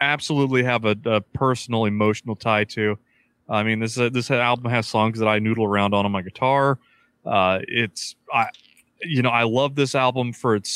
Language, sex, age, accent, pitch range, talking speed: English, male, 30-49, American, 110-135 Hz, 195 wpm